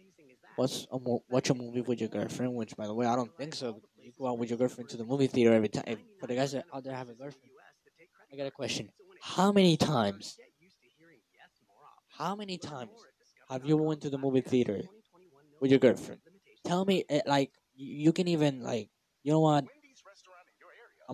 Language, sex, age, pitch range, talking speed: English, male, 10-29, 125-160 Hz, 185 wpm